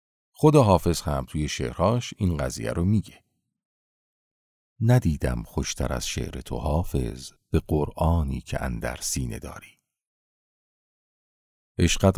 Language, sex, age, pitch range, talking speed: Persian, male, 50-69, 70-100 Hz, 110 wpm